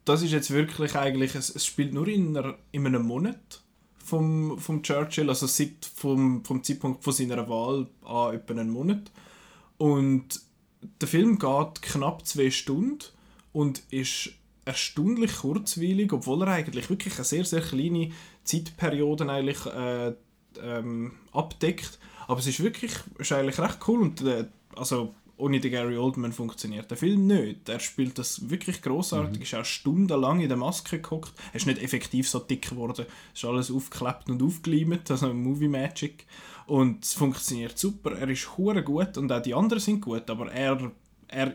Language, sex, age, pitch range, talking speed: German, male, 20-39, 125-165 Hz, 170 wpm